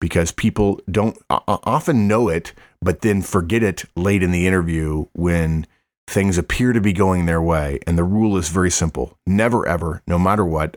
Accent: American